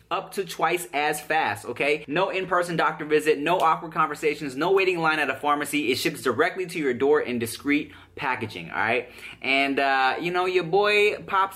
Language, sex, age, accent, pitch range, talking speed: English, male, 20-39, American, 155-220 Hz, 190 wpm